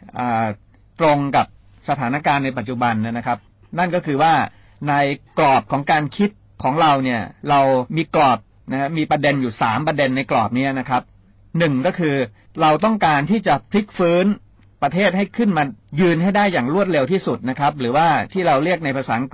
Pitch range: 120-175 Hz